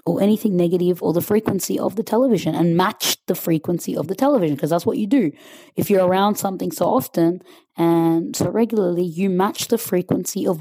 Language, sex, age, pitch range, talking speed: English, female, 20-39, 175-235 Hz, 200 wpm